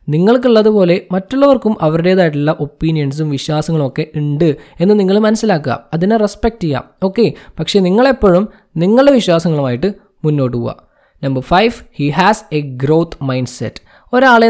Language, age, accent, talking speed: Malayalam, 20-39, native, 115 wpm